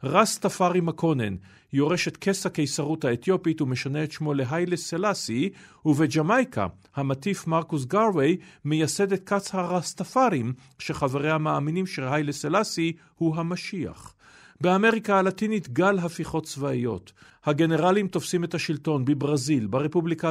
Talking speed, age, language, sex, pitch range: 110 wpm, 50-69, Hebrew, male, 130-170 Hz